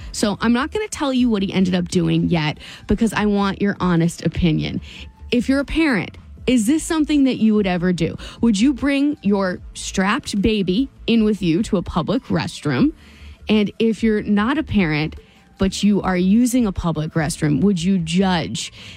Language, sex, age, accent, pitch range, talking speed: English, female, 20-39, American, 170-245 Hz, 185 wpm